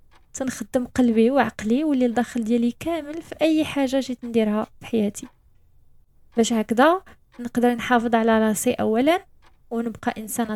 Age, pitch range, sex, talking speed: 20-39, 225-260 Hz, female, 120 wpm